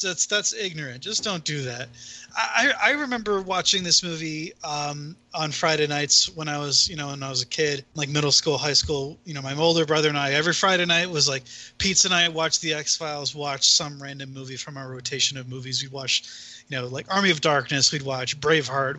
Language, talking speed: English, 220 wpm